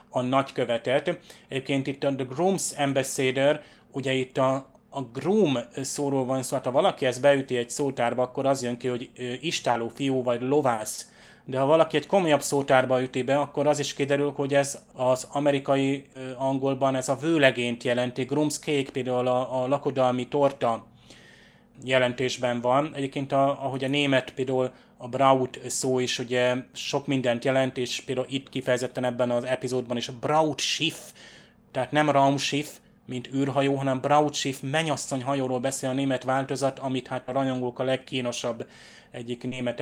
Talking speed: 165 wpm